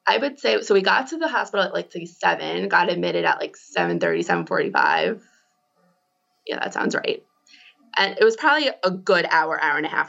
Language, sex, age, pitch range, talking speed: English, female, 20-39, 175-240 Hz, 210 wpm